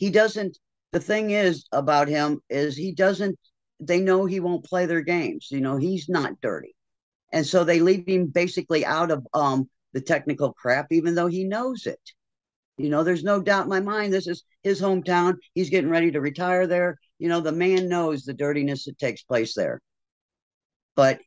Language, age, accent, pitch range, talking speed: English, 50-69, American, 130-180 Hz, 195 wpm